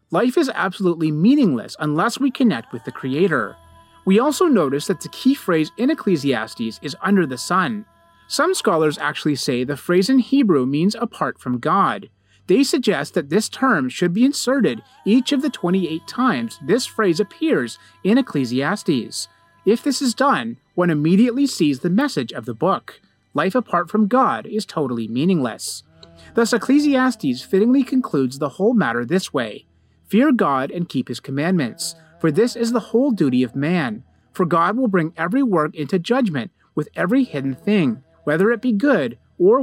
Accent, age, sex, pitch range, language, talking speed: American, 30-49, male, 150-240 Hz, English, 170 wpm